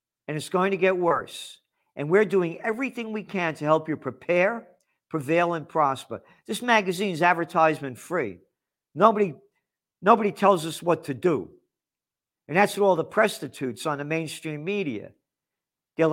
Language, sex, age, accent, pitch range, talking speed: English, male, 50-69, American, 145-195 Hz, 150 wpm